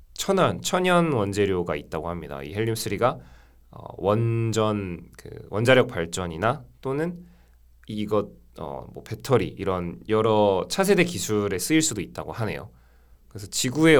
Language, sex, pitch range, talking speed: English, male, 85-125 Hz, 115 wpm